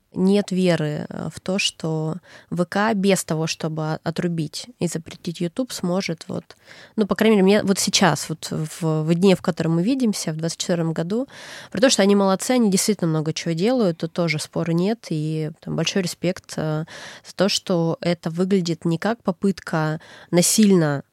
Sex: female